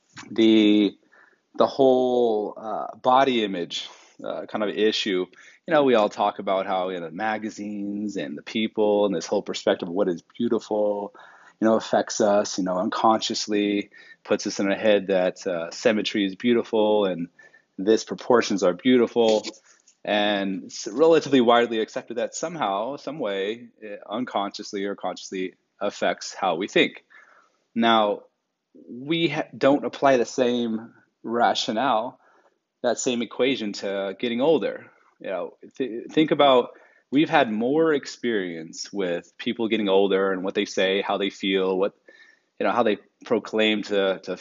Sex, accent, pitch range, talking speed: male, American, 100-125 Hz, 155 wpm